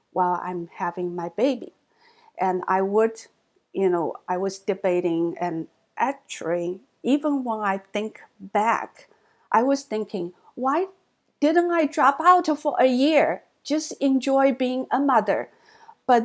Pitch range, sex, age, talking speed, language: 185-280 Hz, female, 50-69, 135 wpm, English